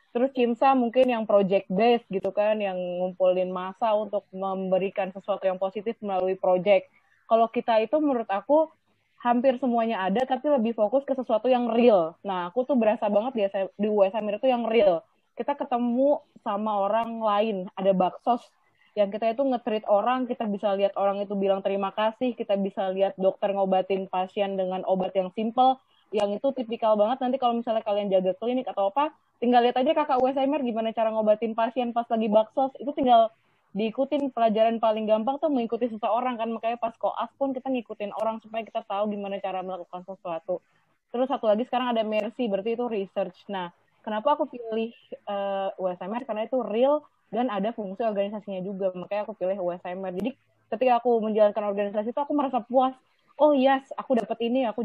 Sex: female